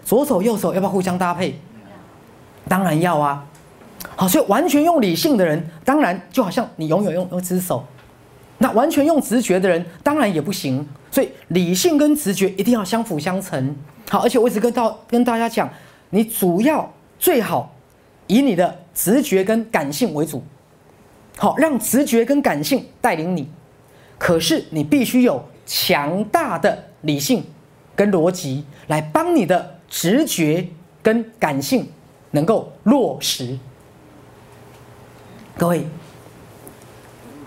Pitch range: 155-240 Hz